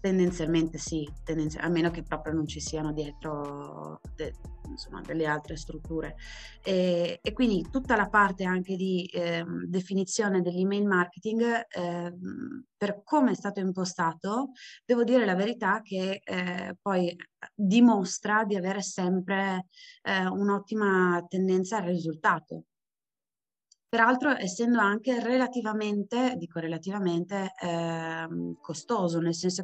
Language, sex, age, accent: Italian, female, 20-39, native